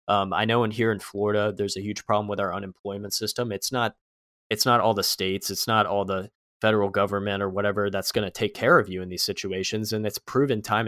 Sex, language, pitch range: male, English, 95-110 Hz